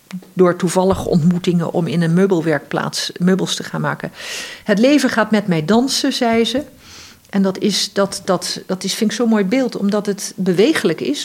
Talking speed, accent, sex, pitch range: 165 wpm, Dutch, female, 180-210 Hz